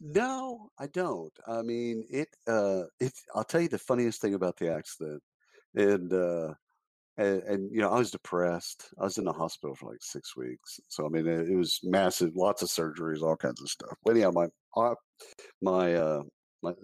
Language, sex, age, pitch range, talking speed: English, male, 50-69, 80-110 Hz, 195 wpm